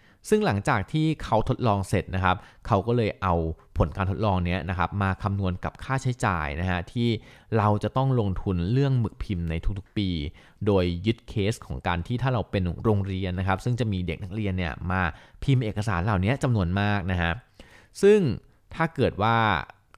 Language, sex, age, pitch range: Thai, male, 20-39, 90-110 Hz